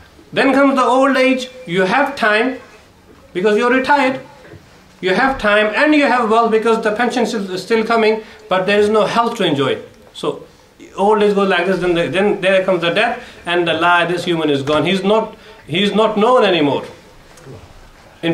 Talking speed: 195 wpm